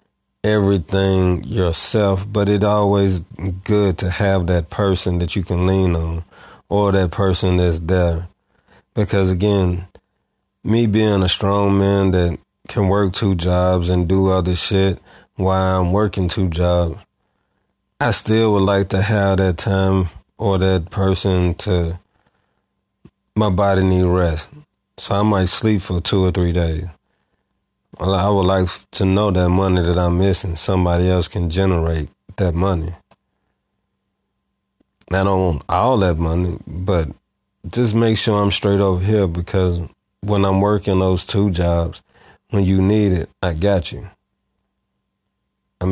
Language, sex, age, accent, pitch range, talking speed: English, male, 30-49, American, 90-100 Hz, 145 wpm